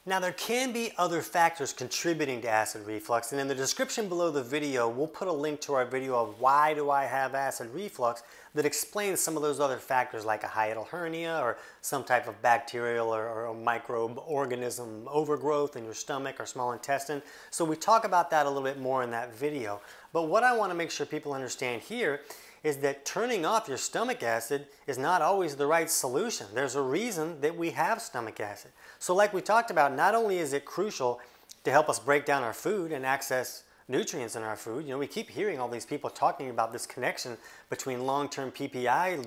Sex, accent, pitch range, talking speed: male, American, 125-170 Hz, 210 wpm